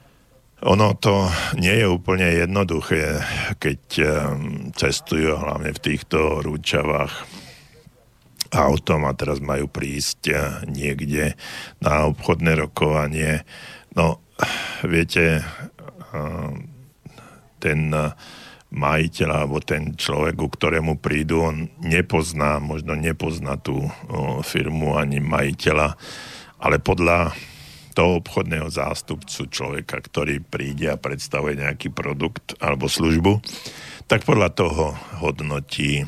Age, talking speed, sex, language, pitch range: 50-69, 95 wpm, male, Slovak, 75-85 Hz